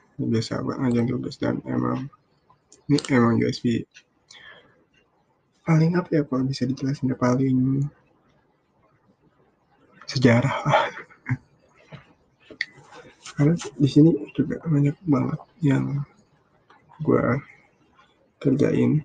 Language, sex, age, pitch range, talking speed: Indonesian, male, 20-39, 120-150 Hz, 80 wpm